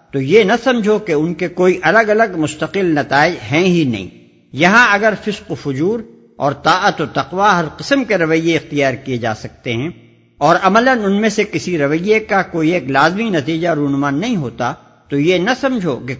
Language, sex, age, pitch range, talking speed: Urdu, male, 60-79, 140-210 Hz, 195 wpm